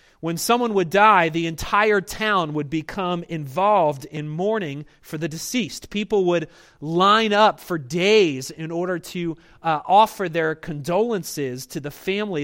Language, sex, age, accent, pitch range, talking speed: English, male, 30-49, American, 155-205 Hz, 150 wpm